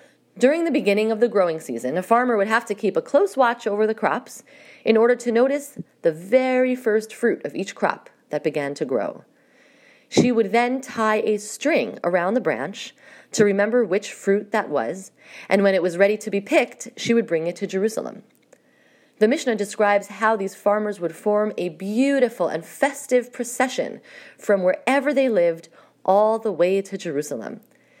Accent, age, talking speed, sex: American, 30-49, 180 wpm, female